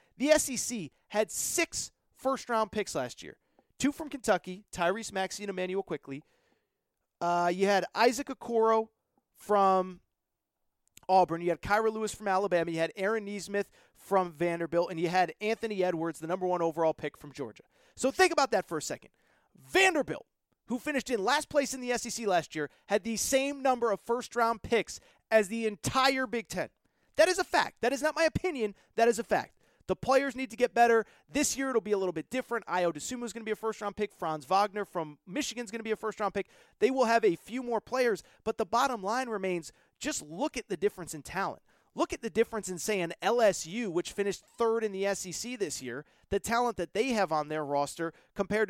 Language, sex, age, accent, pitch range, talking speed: English, male, 30-49, American, 185-240 Hz, 205 wpm